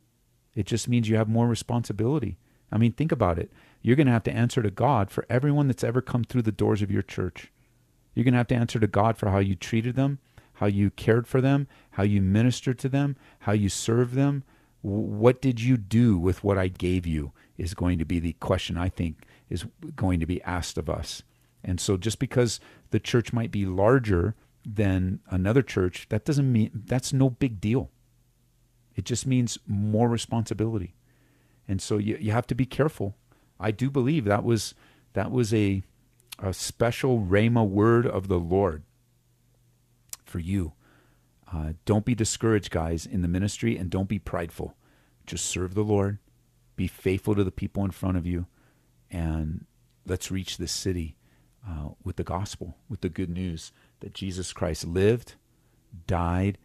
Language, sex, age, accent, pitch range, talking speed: English, male, 40-59, American, 90-120 Hz, 185 wpm